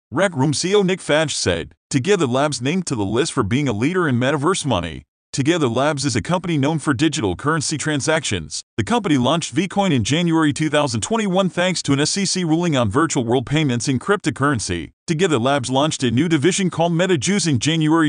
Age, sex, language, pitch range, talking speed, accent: 40-59, male, English, 130-175 Hz, 190 wpm, American